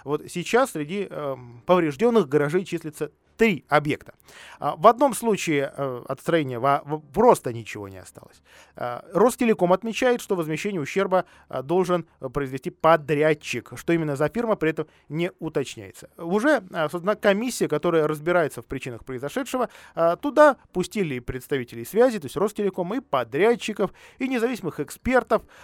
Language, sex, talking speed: Russian, male, 145 wpm